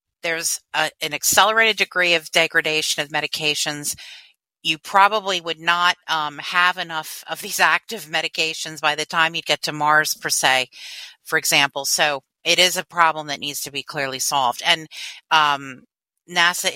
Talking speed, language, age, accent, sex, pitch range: 160 wpm, English, 40-59, American, female, 155-180 Hz